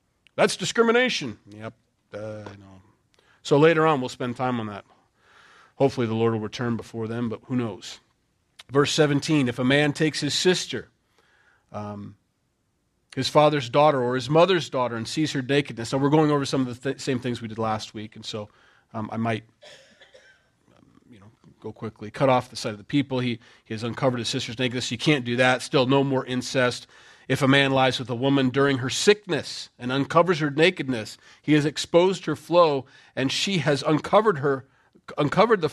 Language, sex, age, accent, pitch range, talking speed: English, male, 40-59, American, 120-150 Hz, 195 wpm